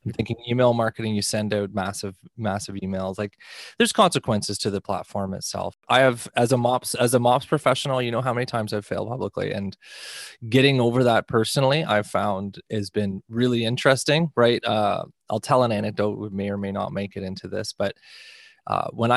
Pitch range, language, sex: 105-130 Hz, English, male